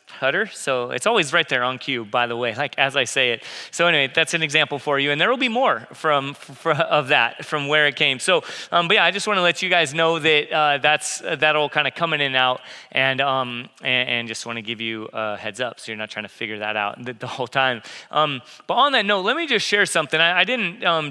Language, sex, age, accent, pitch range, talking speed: English, male, 30-49, American, 125-165 Hz, 280 wpm